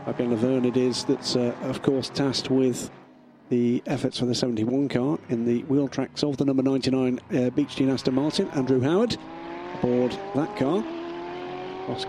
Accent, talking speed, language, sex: British, 175 wpm, English, male